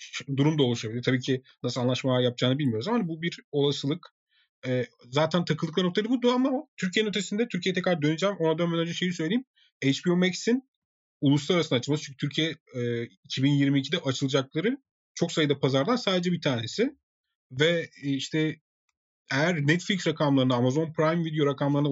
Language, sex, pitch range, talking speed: Turkish, male, 130-170 Hz, 150 wpm